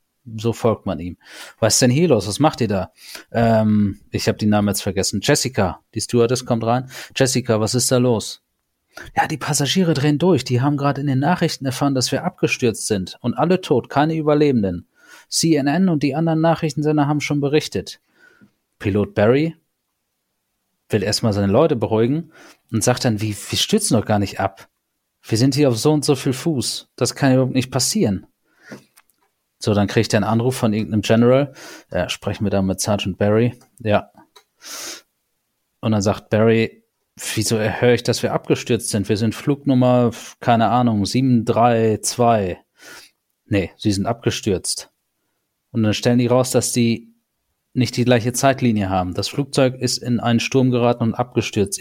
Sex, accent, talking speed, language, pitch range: male, German, 175 wpm, German, 110-135 Hz